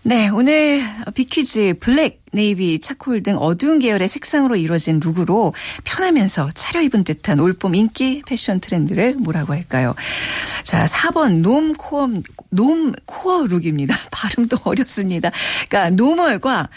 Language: Korean